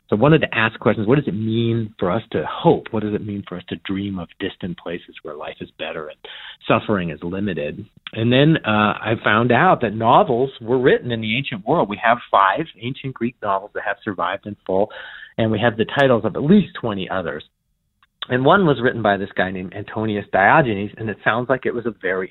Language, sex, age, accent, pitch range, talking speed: English, male, 40-59, American, 105-140 Hz, 230 wpm